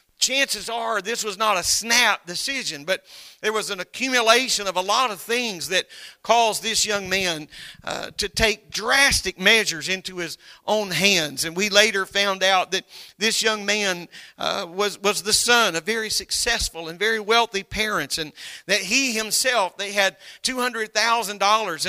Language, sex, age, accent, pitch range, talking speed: English, male, 50-69, American, 185-225 Hz, 165 wpm